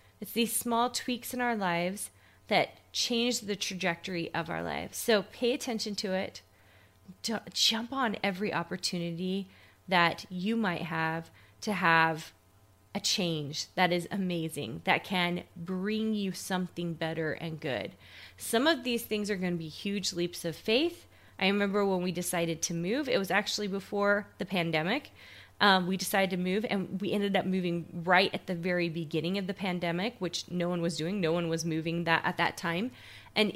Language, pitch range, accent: English, 165-205 Hz, American